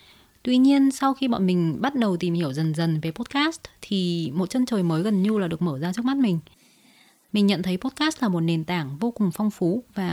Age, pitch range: 20-39, 170-235 Hz